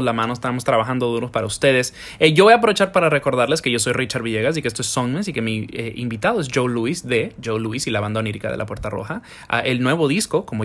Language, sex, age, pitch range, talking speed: English, male, 20-39, 115-150 Hz, 270 wpm